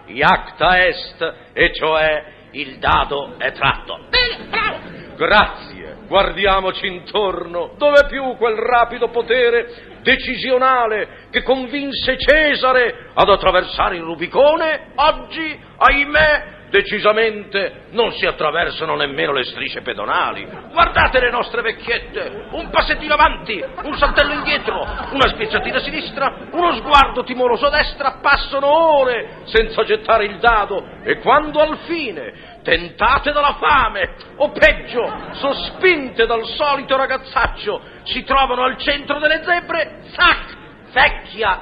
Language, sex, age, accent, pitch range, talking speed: Italian, male, 50-69, native, 225-305 Hz, 115 wpm